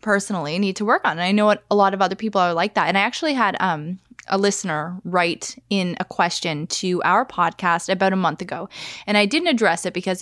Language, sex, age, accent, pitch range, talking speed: English, female, 20-39, American, 175-210 Hz, 235 wpm